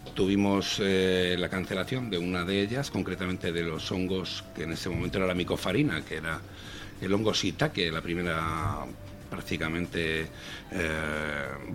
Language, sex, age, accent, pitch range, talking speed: Spanish, male, 60-79, Spanish, 85-95 Hz, 145 wpm